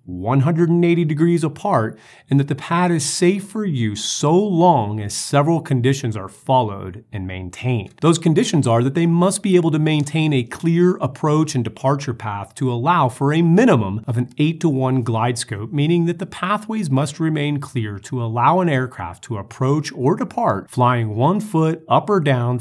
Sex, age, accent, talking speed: male, 30-49, American, 180 wpm